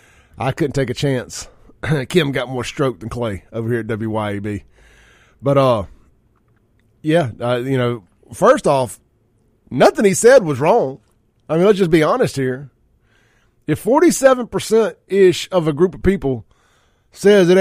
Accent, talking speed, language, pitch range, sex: American, 150 wpm, English, 115-180 Hz, male